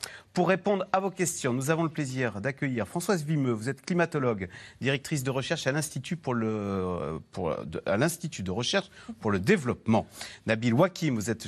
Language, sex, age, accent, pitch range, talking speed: French, male, 40-59, French, 115-165 Hz, 180 wpm